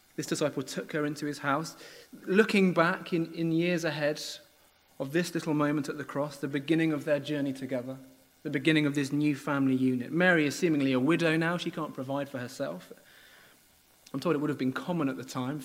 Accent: British